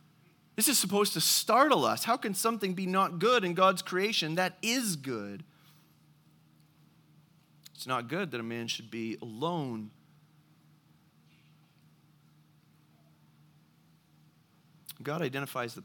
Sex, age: male, 30-49